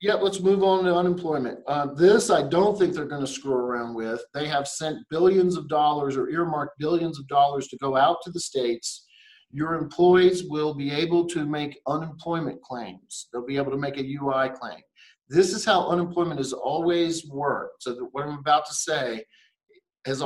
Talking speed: 195 wpm